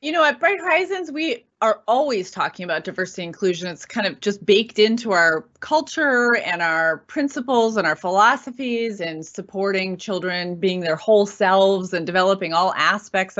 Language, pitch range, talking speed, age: English, 175-215 Hz, 170 wpm, 30-49